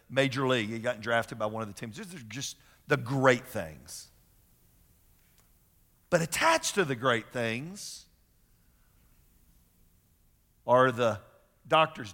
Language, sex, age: English, male, 50-69